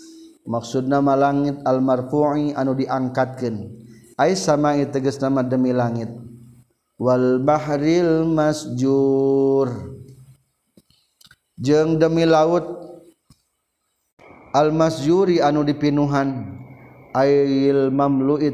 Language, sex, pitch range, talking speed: Indonesian, male, 125-150 Hz, 75 wpm